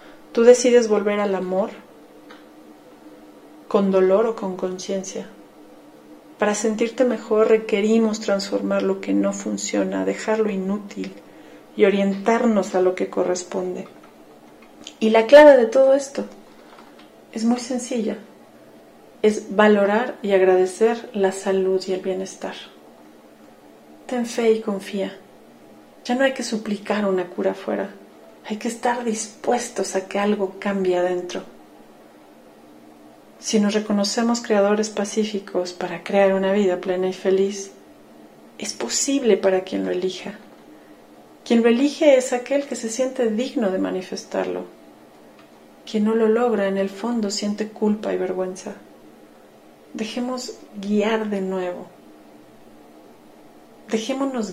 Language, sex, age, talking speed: Spanish, female, 40-59, 120 wpm